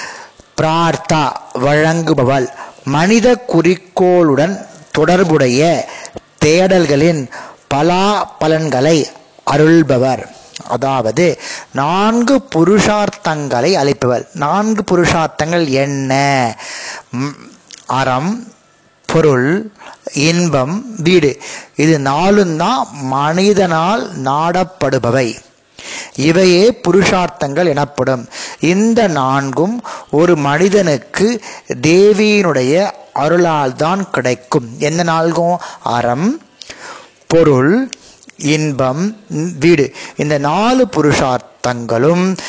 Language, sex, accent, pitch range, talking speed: Tamil, male, native, 140-185 Hz, 55 wpm